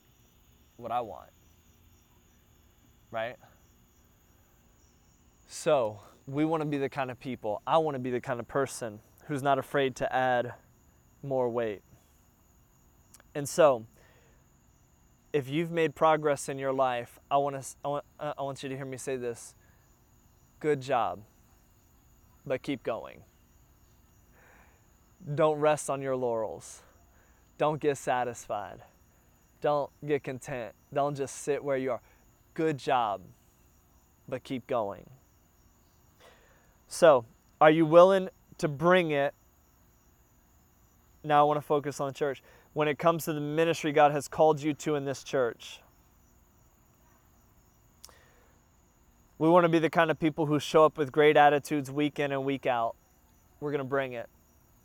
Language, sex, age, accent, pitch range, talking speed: English, male, 20-39, American, 105-150 Hz, 140 wpm